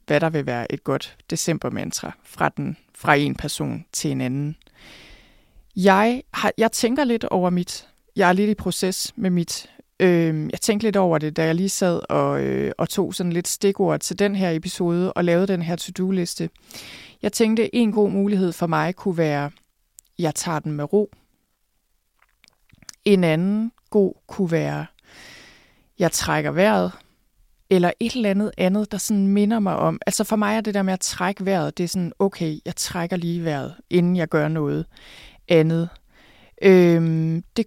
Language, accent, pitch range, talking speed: Danish, native, 160-200 Hz, 180 wpm